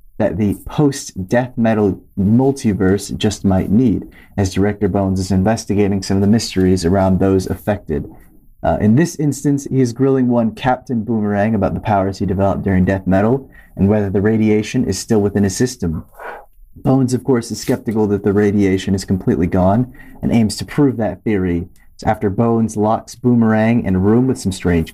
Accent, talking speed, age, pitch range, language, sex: American, 180 wpm, 30-49, 95-120 Hz, English, male